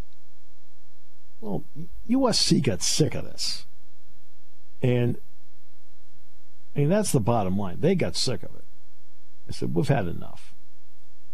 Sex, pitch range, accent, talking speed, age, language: male, 85-145 Hz, American, 120 wpm, 50-69, English